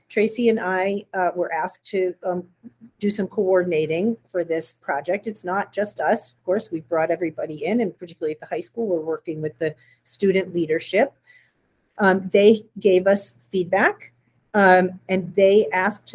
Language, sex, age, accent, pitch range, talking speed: English, female, 40-59, American, 170-210 Hz, 165 wpm